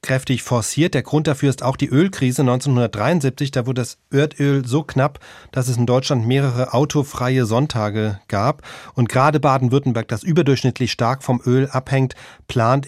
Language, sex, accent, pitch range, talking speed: German, male, German, 120-145 Hz, 160 wpm